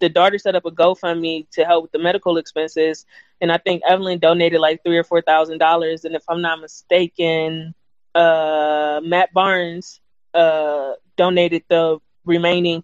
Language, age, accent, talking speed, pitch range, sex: English, 20-39, American, 155 wpm, 170-215 Hz, female